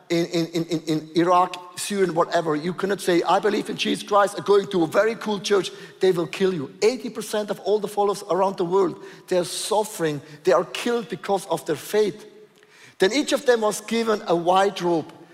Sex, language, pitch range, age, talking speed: male, English, 175-225 Hz, 50-69, 205 wpm